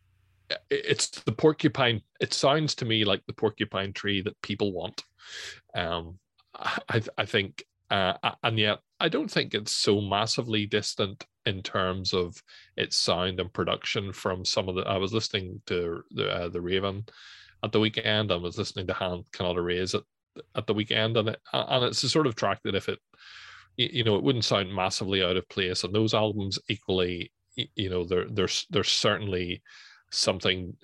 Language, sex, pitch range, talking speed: English, male, 90-110 Hz, 175 wpm